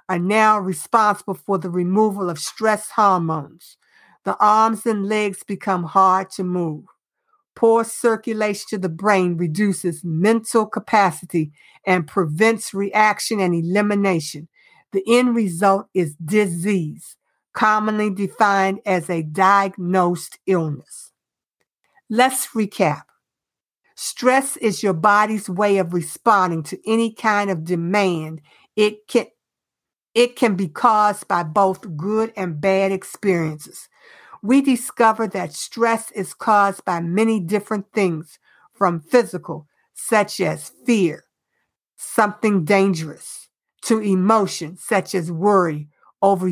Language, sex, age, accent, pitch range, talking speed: English, female, 60-79, American, 180-215 Hz, 115 wpm